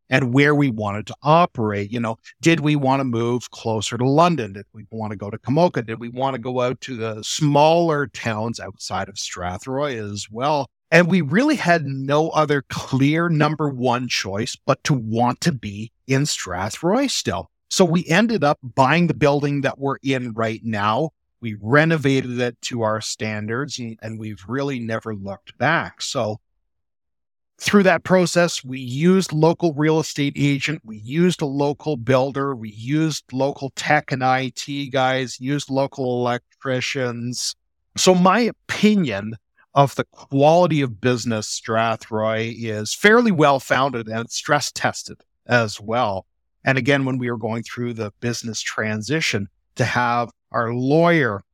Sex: male